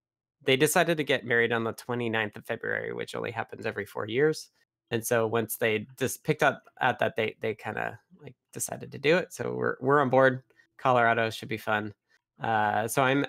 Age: 20-39